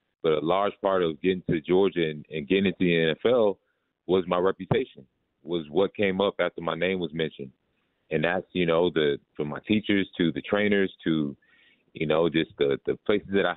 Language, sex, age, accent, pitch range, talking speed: English, male, 30-49, American, 80-95 Hz, 205 wpm